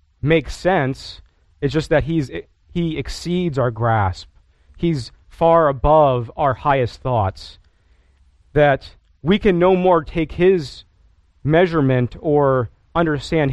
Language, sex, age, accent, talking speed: English, male, 40-59, American, 115 wpm